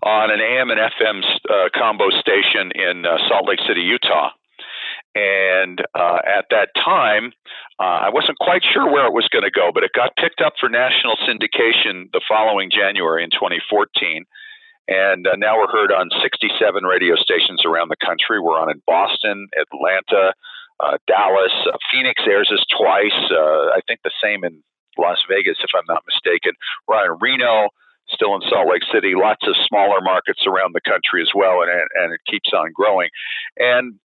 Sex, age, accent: male, 50-69, American